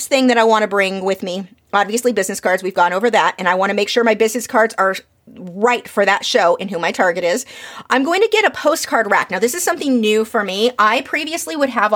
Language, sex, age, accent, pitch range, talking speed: English, female, 30-49, American, 210-265 Hz, 260 wpm